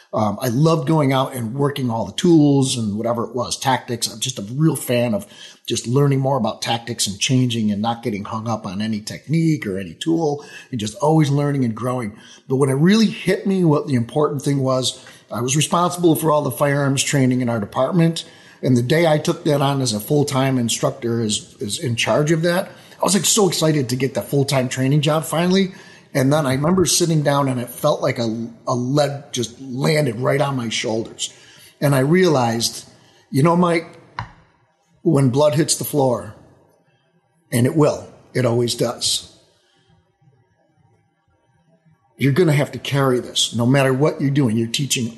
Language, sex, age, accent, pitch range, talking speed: English, male, 30-49, American, 120-155 Hz, 195 wpm